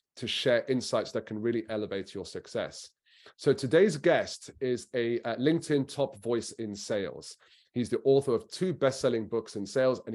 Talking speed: 175 wpm